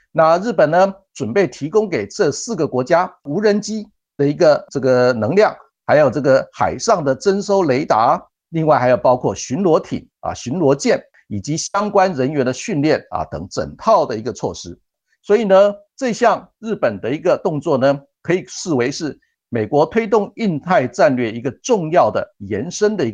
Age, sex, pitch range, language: 50-69, male, 135-205 Hz, Chinese